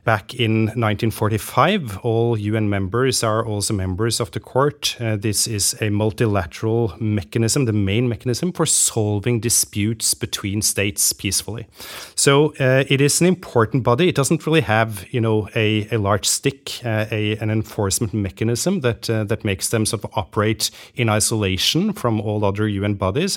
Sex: male